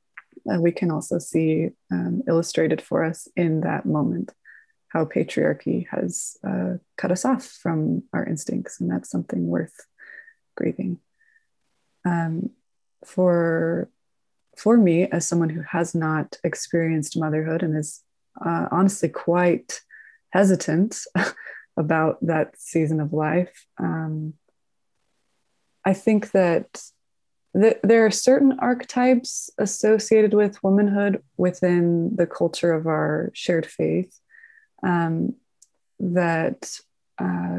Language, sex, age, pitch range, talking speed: English, female, 20-39, 165-205 Hz, 110 wpm